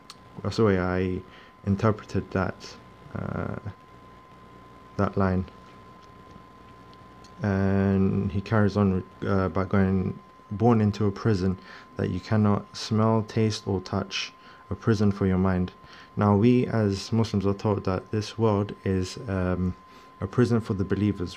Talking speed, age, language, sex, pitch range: 135 wpm, 30-49, English, male, 95-105 Hz